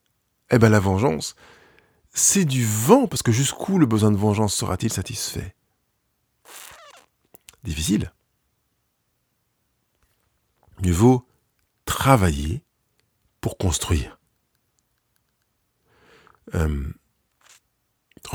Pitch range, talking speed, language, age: 95-155 Hz, 75 wpm, French, 50-69